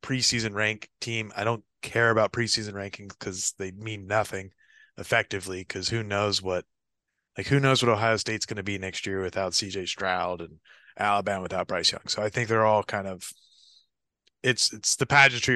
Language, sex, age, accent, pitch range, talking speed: English, male, 20-39, American, 100-120 Hz, 185 wpm